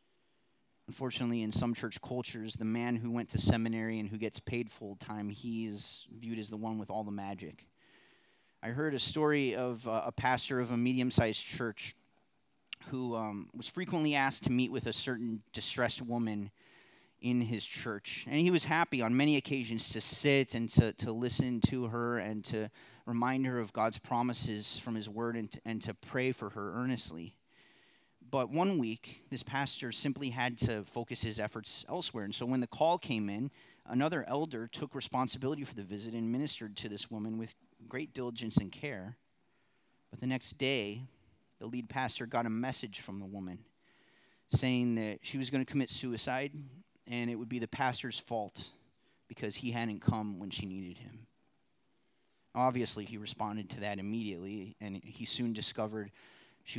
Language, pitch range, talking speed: English, 110-130 Hz, 175 wpm